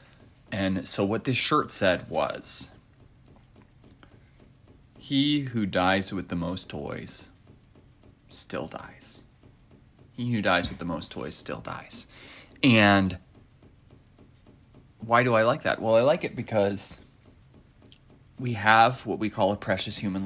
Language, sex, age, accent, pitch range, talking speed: English, male, 30-49, American, 95-120 Hz, 130 wpm